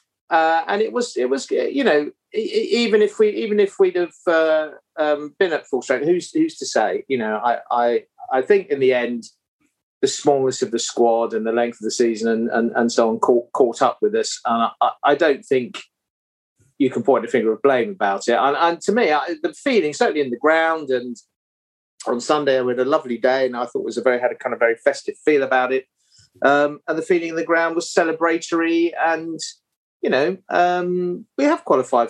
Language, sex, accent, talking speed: English, male, British, 225 wpm